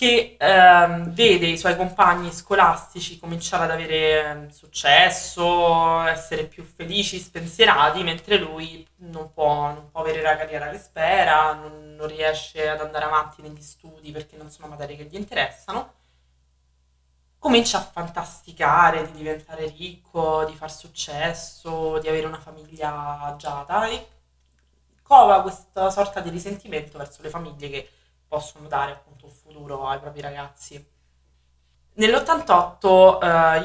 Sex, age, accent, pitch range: female, 20-39, native, 145-170 Hz